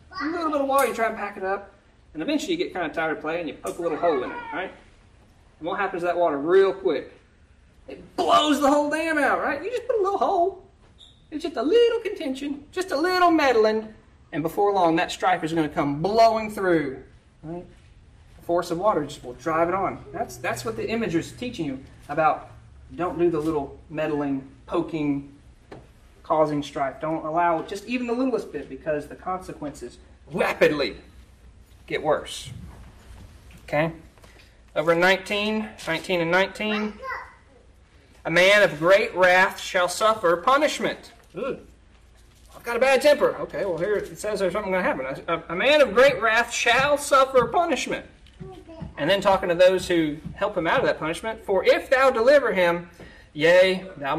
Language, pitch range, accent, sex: English, 165-275 Hz, American, male